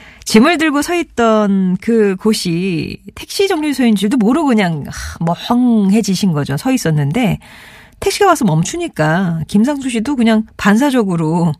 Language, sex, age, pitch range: Korean, female, 40-59, 165-225 Hz